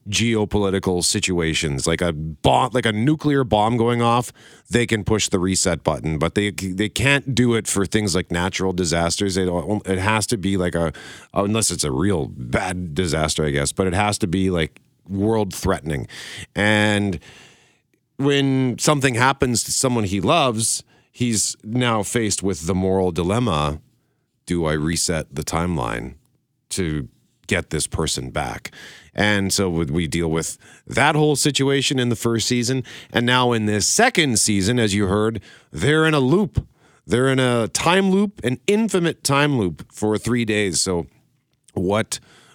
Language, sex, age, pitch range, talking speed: English, male, 40-59, 90-120 Hz, 160 wpm